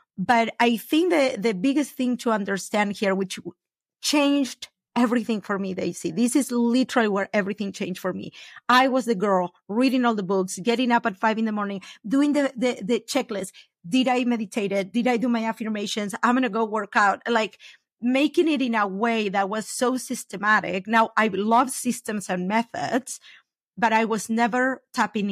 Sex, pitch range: female, 195-245 Hz